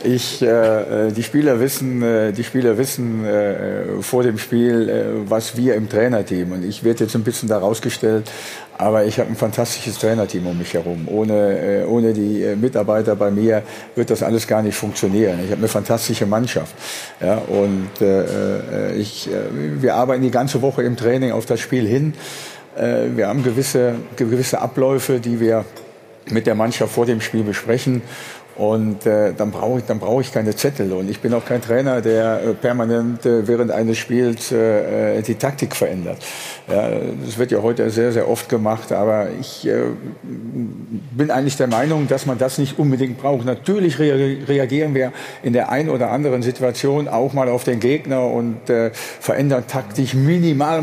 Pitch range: 110-130 Hz